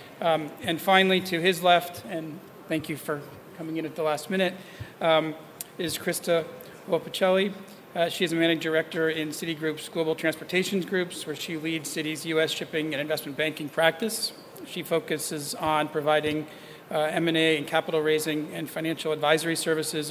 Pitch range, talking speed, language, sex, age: 150-170 Hz, 160 wpm, English, male, 40-59